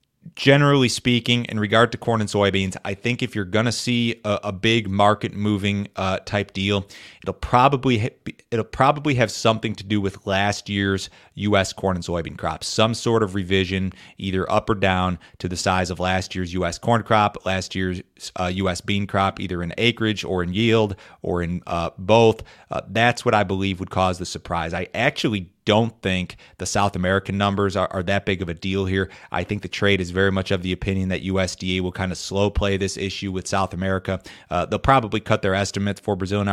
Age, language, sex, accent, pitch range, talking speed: 30-49, English, male, American, 95-105 Hz, 210 wpm